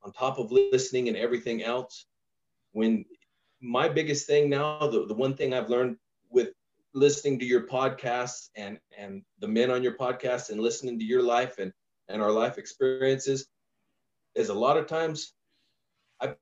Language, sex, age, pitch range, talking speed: English, male, 30-49, 115-180 Hz, 170 wpm